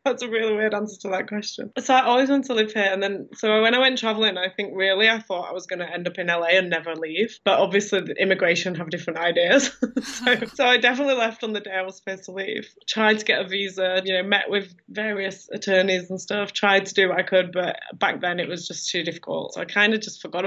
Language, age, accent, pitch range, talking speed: English, 20-39, British, 175-205 Hz, 260 wpm